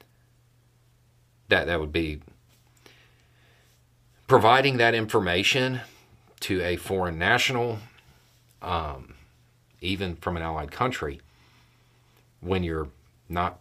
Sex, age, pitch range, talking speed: male, 40-59, 95-120 Hz, 90 wpm